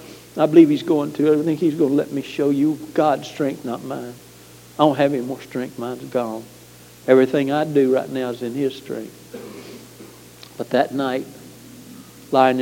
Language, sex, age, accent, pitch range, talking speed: English, male, 60-79, American, 110-170 Hz, 185 wpm